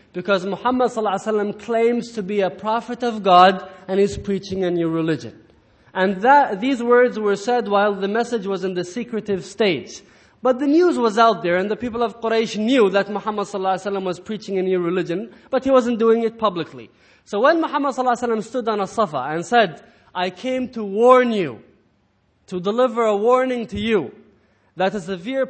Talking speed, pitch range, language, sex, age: 205 wpm, 200-260 Hz, English, male, 20-39